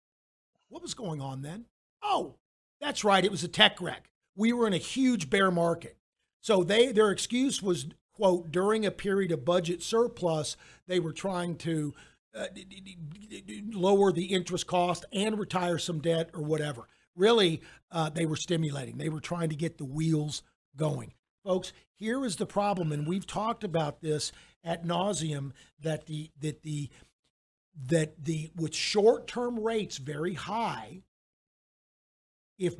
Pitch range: 165-210 Hz